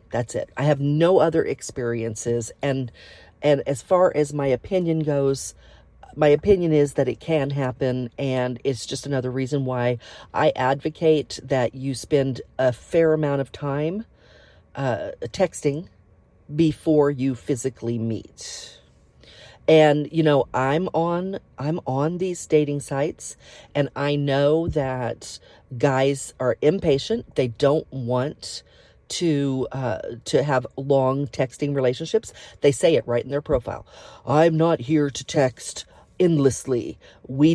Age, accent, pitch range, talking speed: 40-59, American, 120-150 Hz, 135 wpm